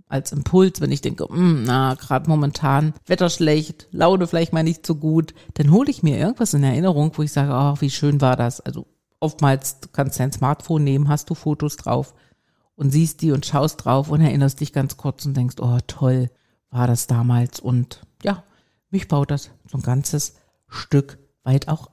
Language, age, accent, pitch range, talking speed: German, 50-69, German, 135-180 Hz, 195 wpm